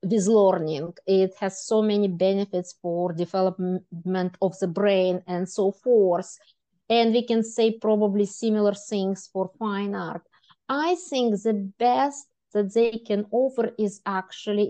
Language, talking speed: English, 145 wpm